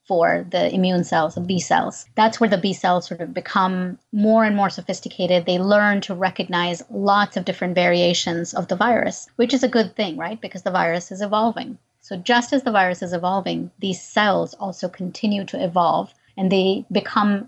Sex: female